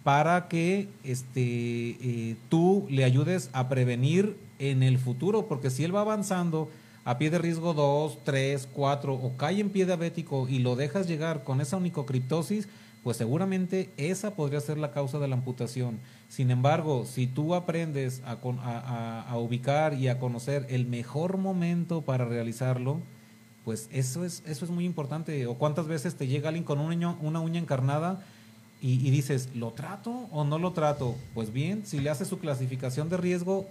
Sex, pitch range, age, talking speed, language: male, 125-165 Hz, 40-59, 175 wpm, Spanish